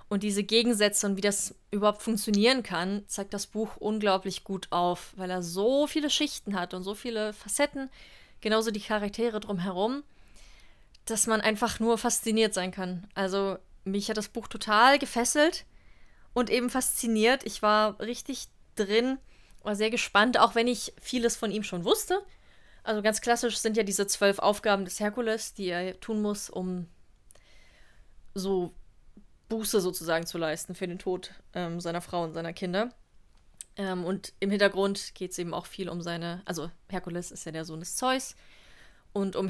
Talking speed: 170 wpm